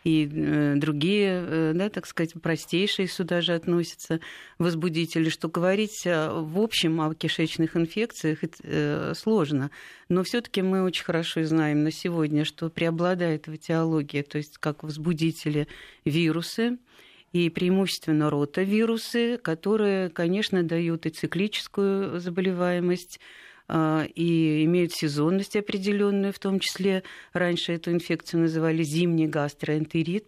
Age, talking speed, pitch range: 50-69, 115 wpm, 160-190 Hz